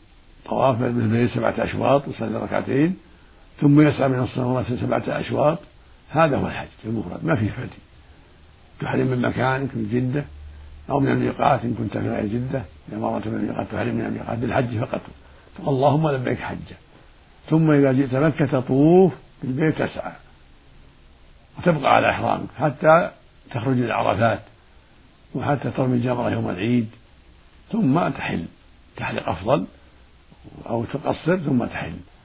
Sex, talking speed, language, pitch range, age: male, 125 wpm, Arabic, 100-135 Hz, 60-79